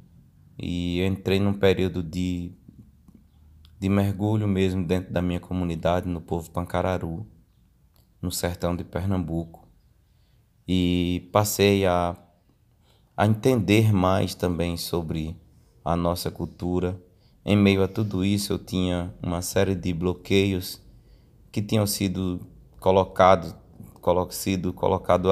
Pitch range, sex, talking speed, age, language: 90-100 Hz, male, 110 wpm, 20-39, Portuguese